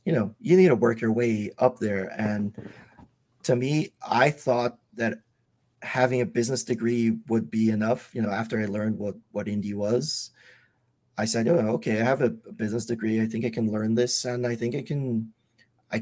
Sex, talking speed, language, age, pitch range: male, 195 wpm, English, 30-49, 105-120 Hz